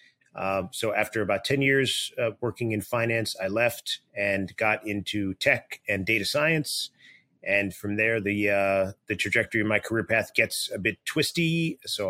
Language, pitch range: English, 95-115 Hz